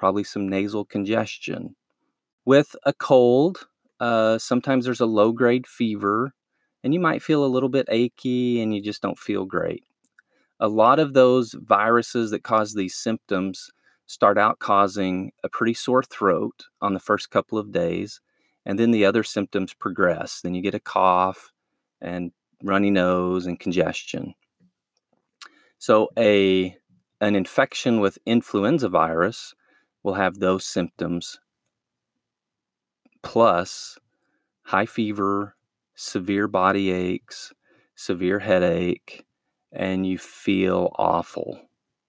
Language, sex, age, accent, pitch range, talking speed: English, male, 30-49, American, 95-115 Hz, 125 wpm